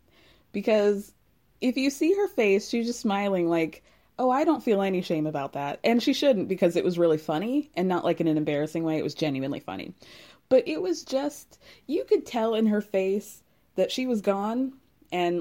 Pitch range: 165-240 Hz